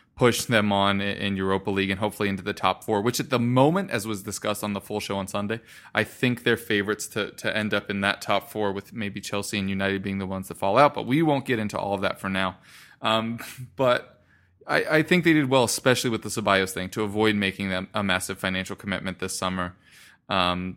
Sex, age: male, 20-39